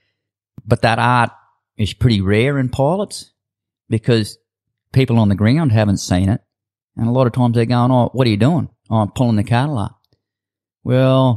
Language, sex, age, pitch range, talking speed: English, male, 40-59, 105-125 Hz, 185 wpm